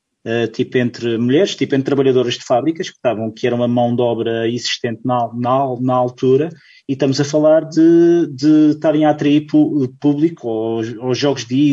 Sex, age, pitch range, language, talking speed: male, 20-39, 125-150 Hz, Portuguese, 170 wpm